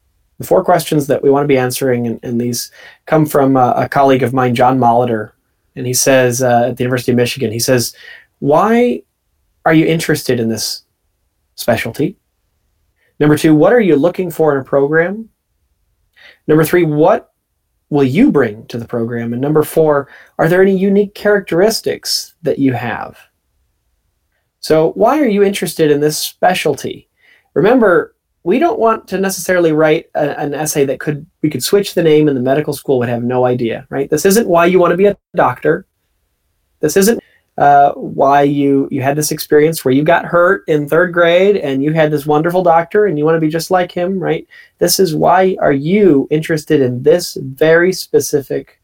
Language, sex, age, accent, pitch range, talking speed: English, male, 30-49, American, 130-180 Hz, 185 wpm